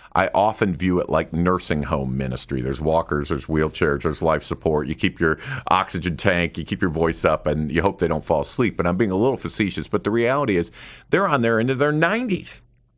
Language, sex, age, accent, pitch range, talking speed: English, male, 50-69, American, 75-105 Hz, 225 wpm